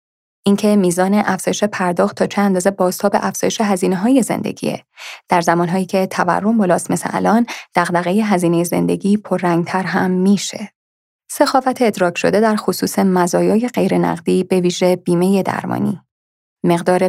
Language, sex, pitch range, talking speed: Persian, female, 180-230 Hz, 135 wpm